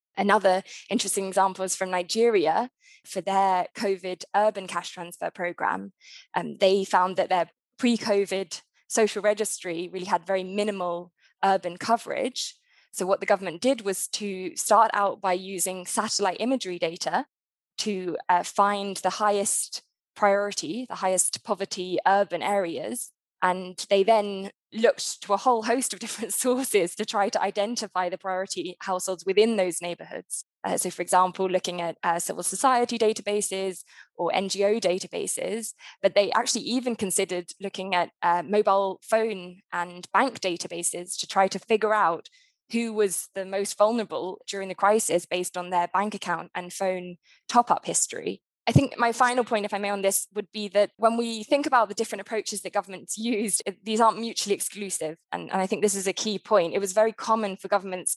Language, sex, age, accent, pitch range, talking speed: English, female, 20-39, British, 185-215 Hz, 170 wpm